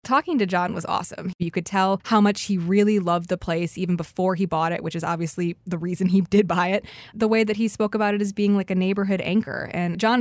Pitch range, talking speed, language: 180-215 Hz, 260 wpm, English